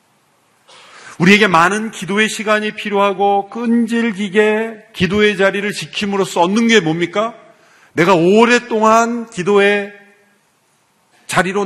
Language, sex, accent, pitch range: Korean, male, native, 140-205 Hz